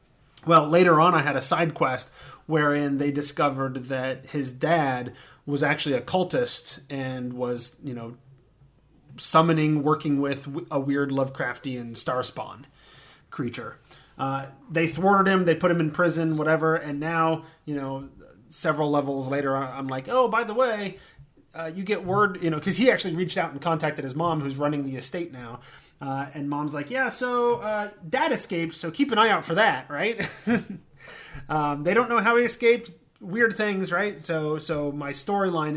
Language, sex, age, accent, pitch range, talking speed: English, male, 30-49, American, 135-170 Hz, 175 wpm